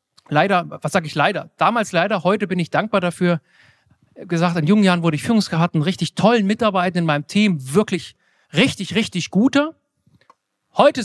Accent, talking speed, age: German, 170 wpm, 40-59